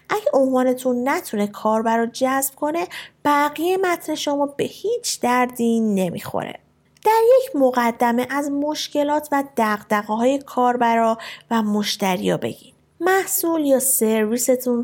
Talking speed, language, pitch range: 115 wpm, Persian, 230-295 Hz